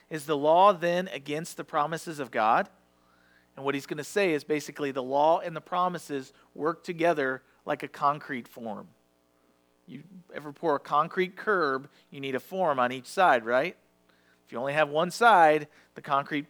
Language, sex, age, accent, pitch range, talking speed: English, male, 40-59, American, 115-175 Hz, 180 wpm